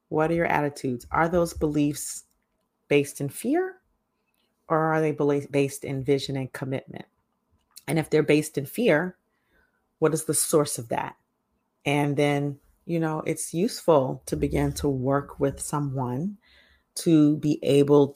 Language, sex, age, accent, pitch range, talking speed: English, female, 30-49, American, 135-155 Hz, 150 wpm